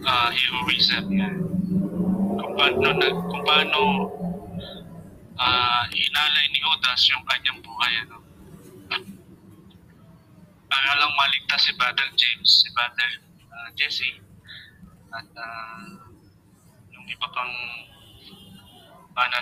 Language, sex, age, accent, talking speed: English, male, 20-39, Filipino, 95 wpm